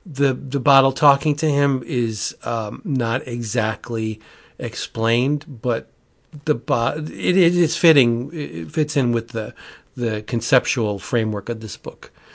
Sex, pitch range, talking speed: male, 115-140 Hz, 140 wpm